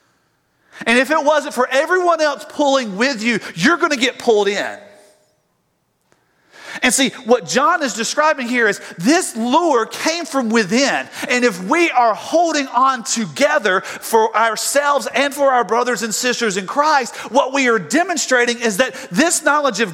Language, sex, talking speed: English, male, 165 wpm